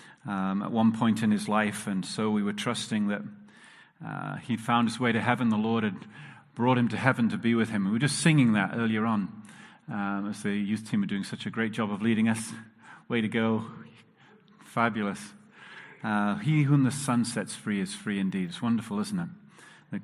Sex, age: male, 40-59